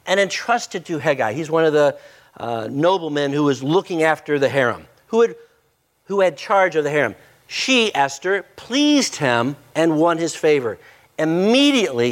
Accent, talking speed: American, 160 wpm